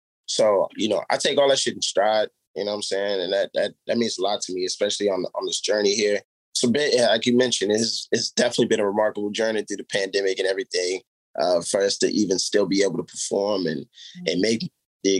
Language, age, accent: English, 20-39, American